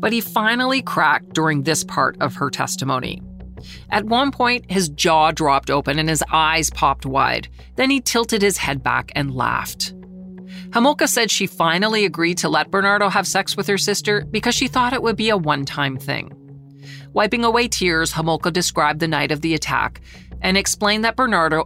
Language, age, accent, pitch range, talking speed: English, 40-59, American, 145-205 Hz, 185 wpm